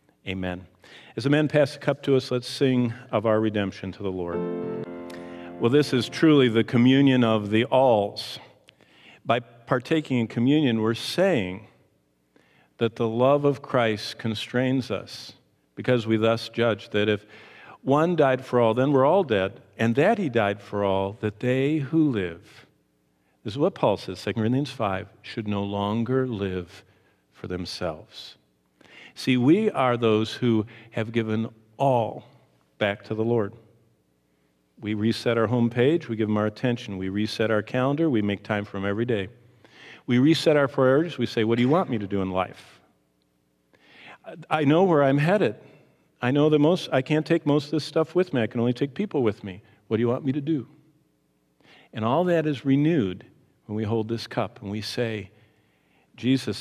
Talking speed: 180 wpm